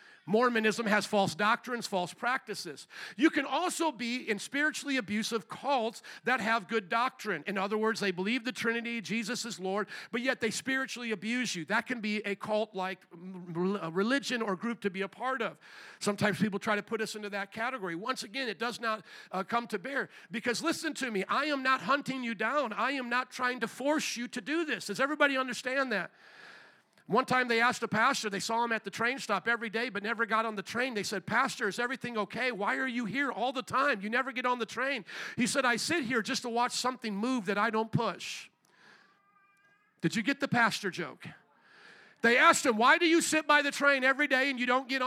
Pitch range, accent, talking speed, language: 205-260 Hz, American, 220 wpm, English